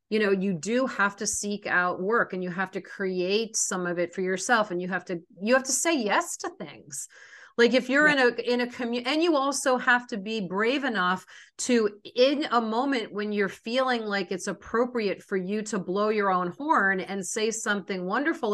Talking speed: 215 wpm